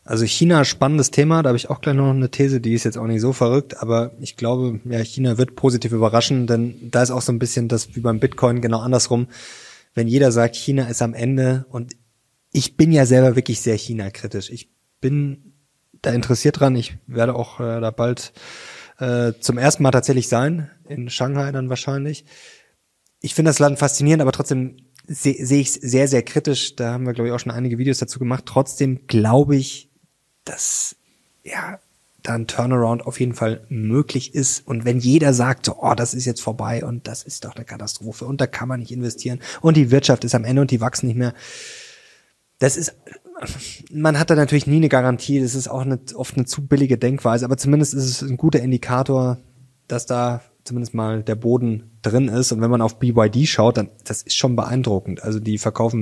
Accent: German